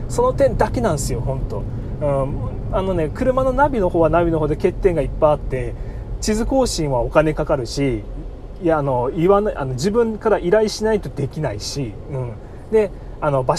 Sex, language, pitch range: male, Japanese, 125-190 Hz